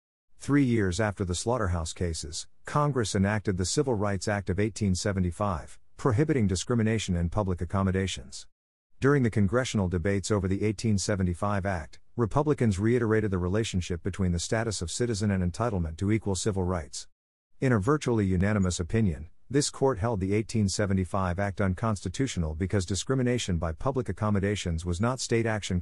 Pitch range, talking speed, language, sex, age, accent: 90-115 Hz, 145 wpm, English, male, 50-69, American